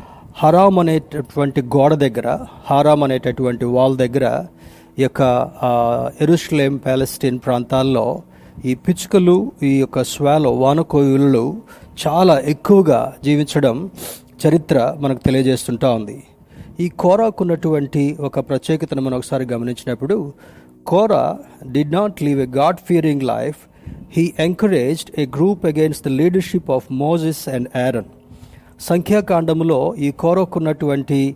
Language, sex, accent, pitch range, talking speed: Telugu, male, native, 125-155 Hz, 105 wpm